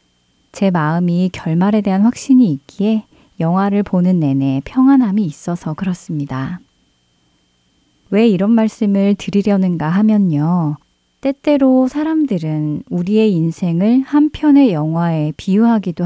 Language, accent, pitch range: Korean, native, 160-210 Hz